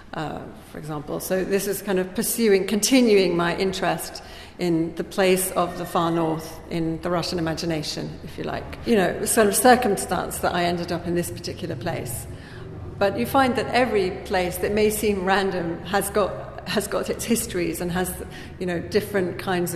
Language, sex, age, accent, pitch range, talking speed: English, female, 40-59, British, 165-195 Hz, 185 wpm